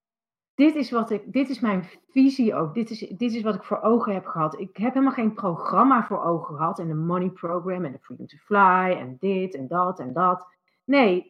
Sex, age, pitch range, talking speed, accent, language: female, 40-59, 185-230 Hz, 205 wpm, Dutch, Dutch